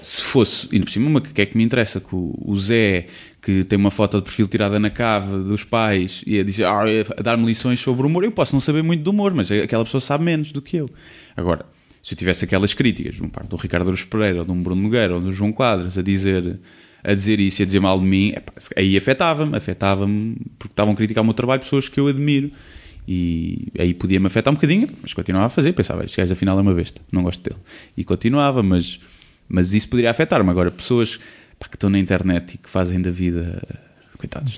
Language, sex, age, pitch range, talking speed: Portuguese, male, 20-39, 95-120 Hz, 235 wpm